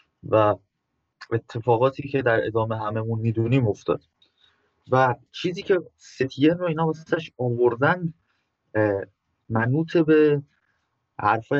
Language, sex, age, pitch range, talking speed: Persian, male, 20-39, 110-135 Hz, 105 wpm